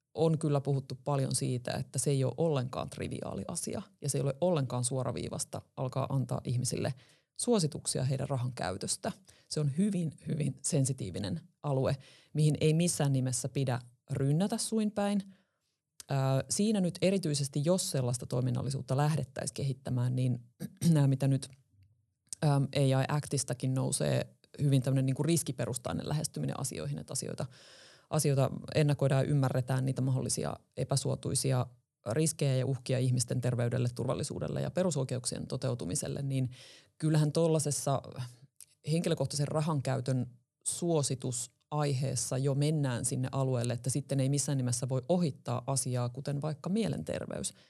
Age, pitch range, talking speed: 30-49, 130-155 Hz, 125 wpm